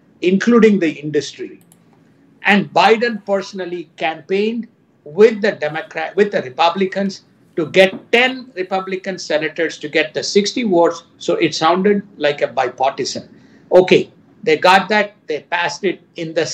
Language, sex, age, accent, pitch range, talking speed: English, male, 60-79, Indian, 170-235 Hz, 140 wpm